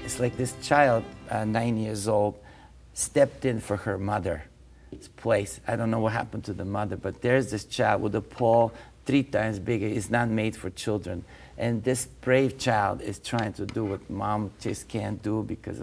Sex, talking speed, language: male, 195 wpm, English